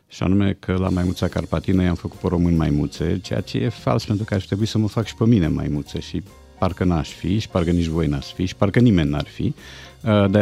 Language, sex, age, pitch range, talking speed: Romanian, male, 50-69, 85-110 Hz, 265 wpm